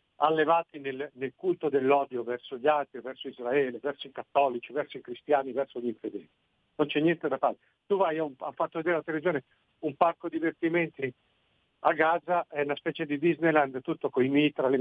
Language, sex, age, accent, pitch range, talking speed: Italian, male, 50-69, native, 140-170 Hz, 185 wpm